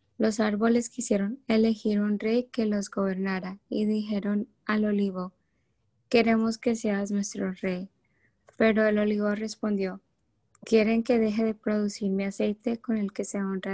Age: 20-39